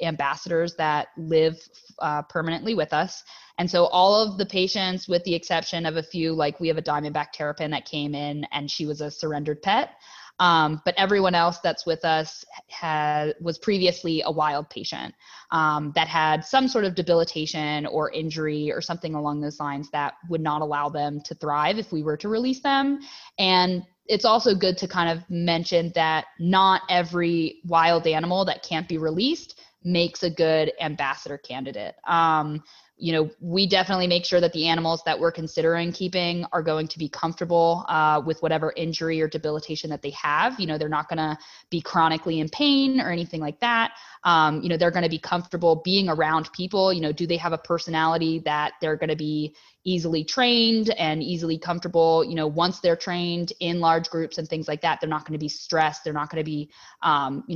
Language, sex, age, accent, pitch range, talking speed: English, female, 20-39, American, 155-175 Hz, 195 wpm